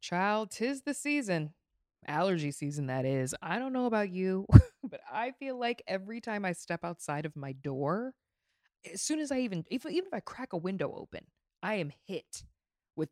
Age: 20-39